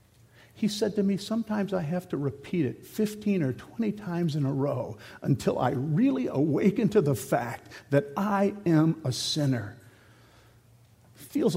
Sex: male